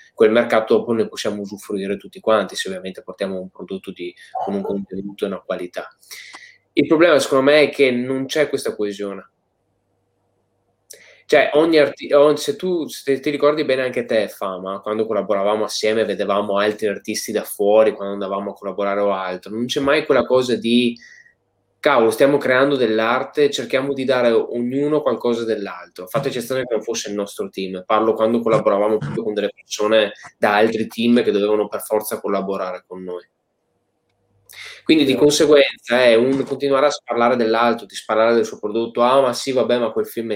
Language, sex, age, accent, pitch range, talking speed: Italian, male, 20-39, native, 100-135 Hz, 170 wpm